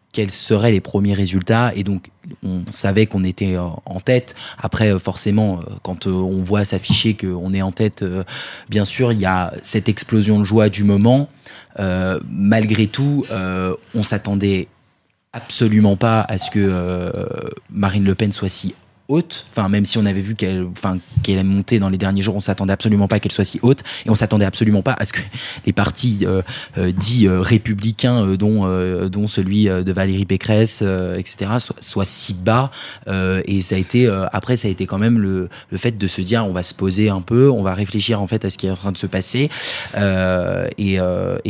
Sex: male